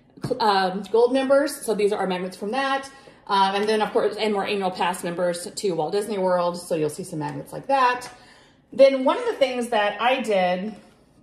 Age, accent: 30-49, American